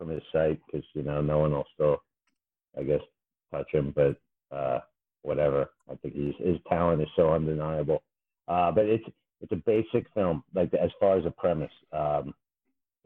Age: 50-69